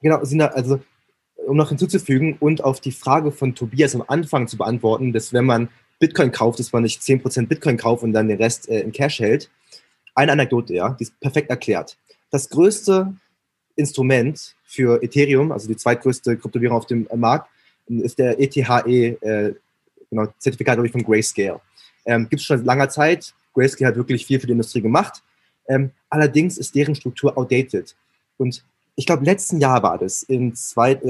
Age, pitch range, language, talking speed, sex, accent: 20-39, 120-150 Hz, German, 175 wpm, male, German